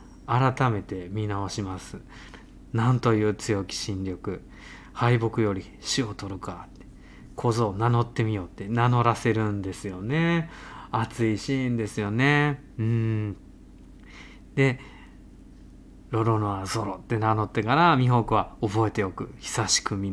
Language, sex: Japanese, male